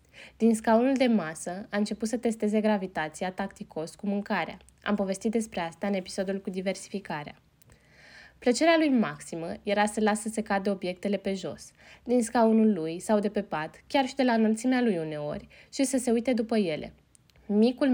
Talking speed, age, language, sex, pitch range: 175 wpm, 20-39, Romanian, female, 195-245 Hz